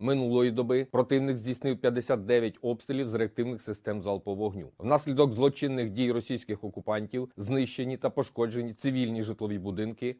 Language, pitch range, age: Ukrainian, 115-135 Hz, 30-49